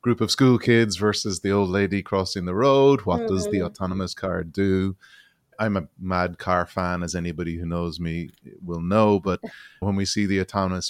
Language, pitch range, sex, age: English, 90-105 Hz, male, 30-49